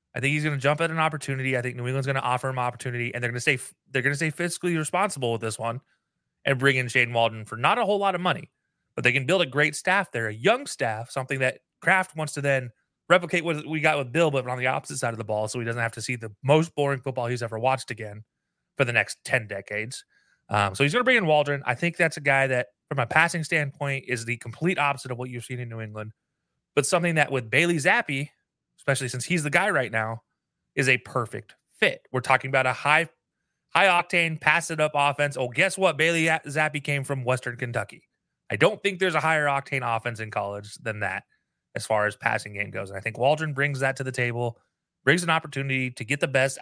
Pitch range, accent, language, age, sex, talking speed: 120-155 Hz, American, English, 30-49, male, 245 wpm